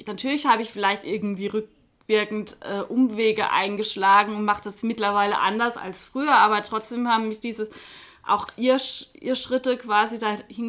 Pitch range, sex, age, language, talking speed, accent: 195-235 Hz, female, 20-39, German, 150 wpm, German